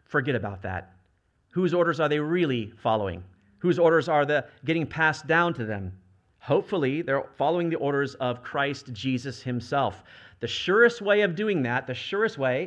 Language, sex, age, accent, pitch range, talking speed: English, male, 40-59, American, 125-195 Hz, 170 wpm